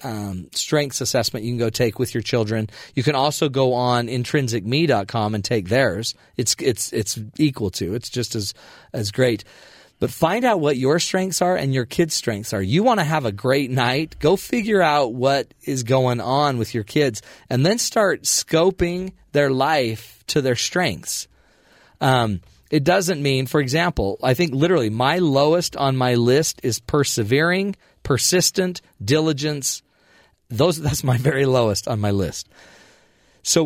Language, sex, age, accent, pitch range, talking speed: English, male, 40-59, American, 120-150 Hz, 165 wpm